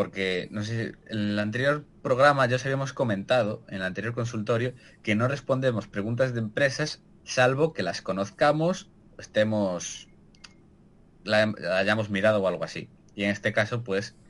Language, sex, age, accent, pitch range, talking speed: Spanish, male, 20-39, Spanish, 105-140 Hz, 145 wpm